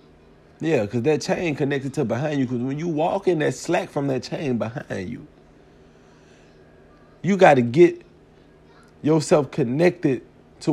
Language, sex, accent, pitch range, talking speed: English, male, American, 120-170 Hz, 150 wpm